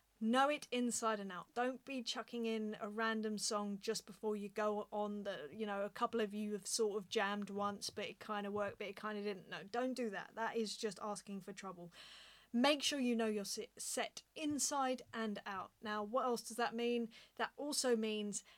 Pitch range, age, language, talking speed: 205-255 Hz, 30-49, English, 215 wpm